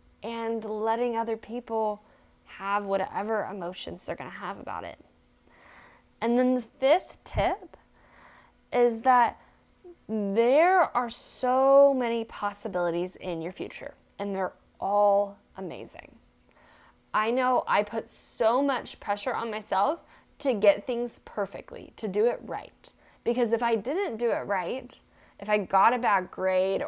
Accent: American